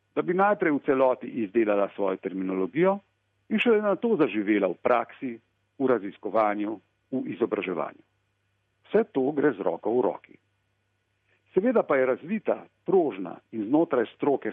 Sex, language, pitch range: male, Italian, 100-155 Hz